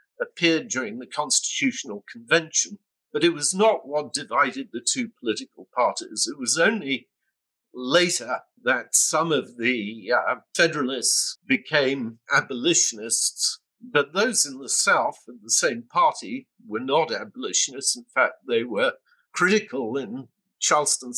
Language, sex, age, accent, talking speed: English, male, 50-69, British, 130 wpm